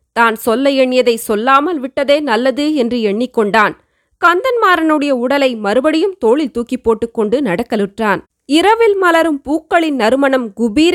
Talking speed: 110 wpm